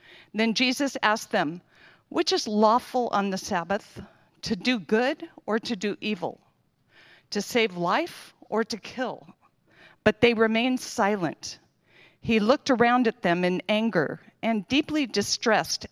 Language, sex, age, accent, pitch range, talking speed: English, female, 50-69, American, 190-230 Hz, 140 wpm